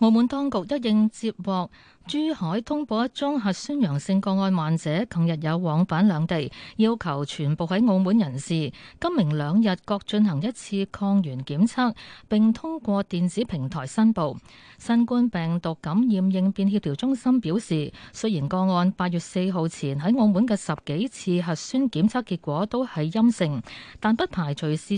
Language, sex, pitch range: Chinese, female, 165-230 Hz